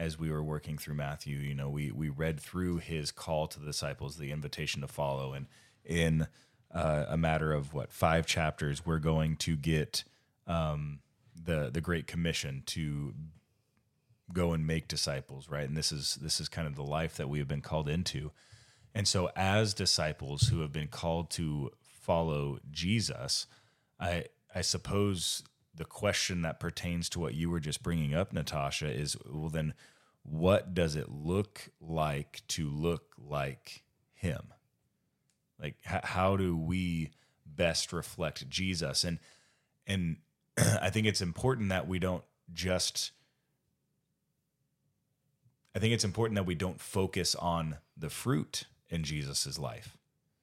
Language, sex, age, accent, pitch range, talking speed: English, male, 30-49, American, 75-95 Hz, 155 wpm